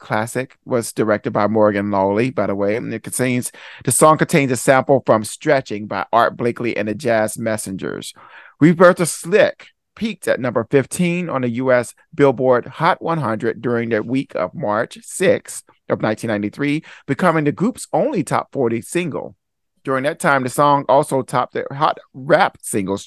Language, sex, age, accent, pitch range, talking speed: English, male, 40-59, American, 105-135 Hz, 170 wpm